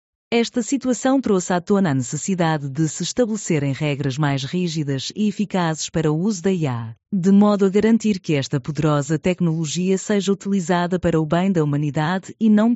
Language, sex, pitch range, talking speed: Portuguese, female, 145-200 Hz, 175 wpm